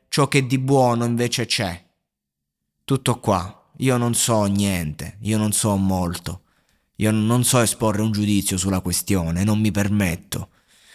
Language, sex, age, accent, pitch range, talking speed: Italian, male, 20-39, native, 95-115 Hz, 150 wpm